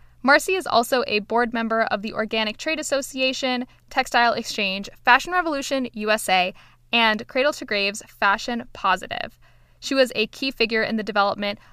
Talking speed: 155 wpm